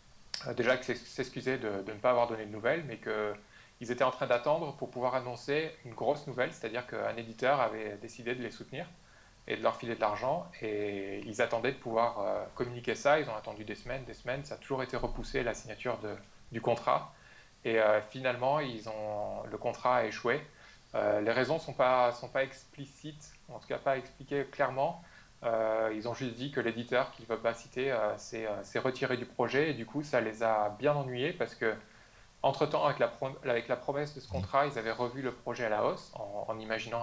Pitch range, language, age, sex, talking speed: 110-135 Hz, French, 20-39, male, 215 wpm